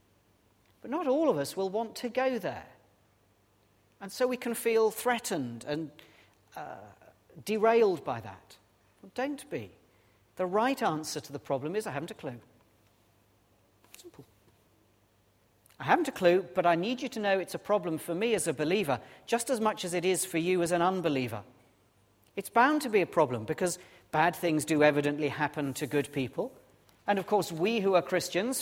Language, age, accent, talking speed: English, 40-59, British, 180 wpm